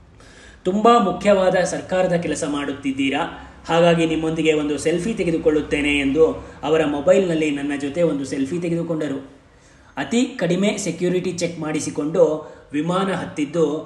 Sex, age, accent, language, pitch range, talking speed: male, 20-39, native, Kannada, 150-175 Hz, 110 wpm